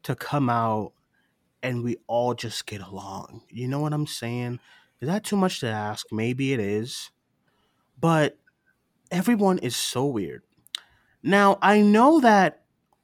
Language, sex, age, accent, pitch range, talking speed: English, male, 20-39, American, 120-180 Hz, 145 wpm